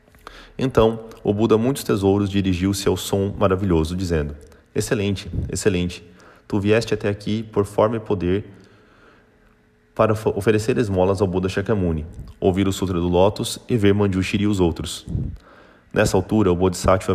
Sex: male